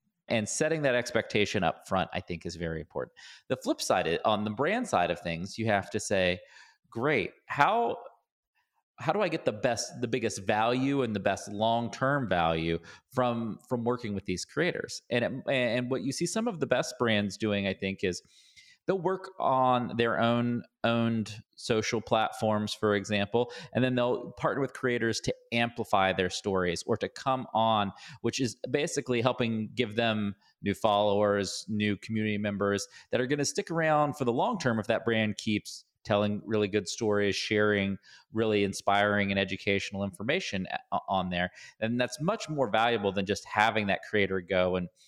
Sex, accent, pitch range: male, American, 100-120 Hz